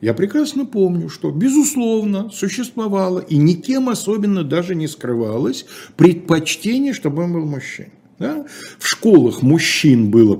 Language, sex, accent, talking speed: Russian, male, native, 125 wpm